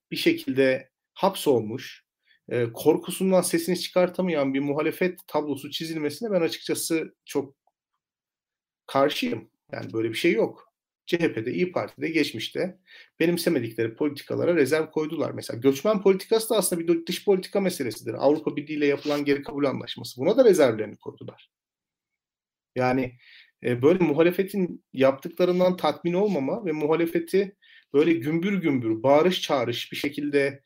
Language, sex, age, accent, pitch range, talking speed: Turkish, male, 40-59, native, 140-185 Hz, 120 wpm